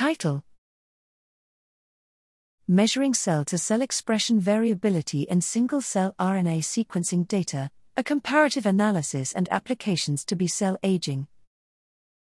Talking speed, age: 90 wpm, 40-59